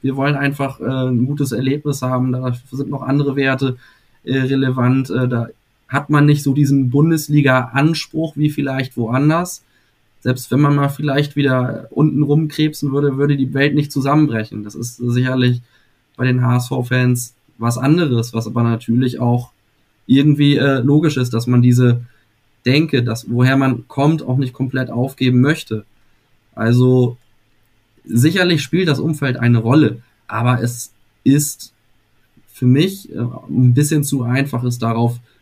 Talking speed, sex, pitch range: 145 wpm, male, 120-140 Hz